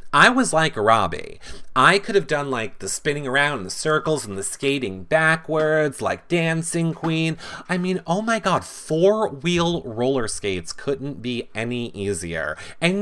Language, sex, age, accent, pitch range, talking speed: English, male, 30-49, American, 105-170 Hz, 165 wpm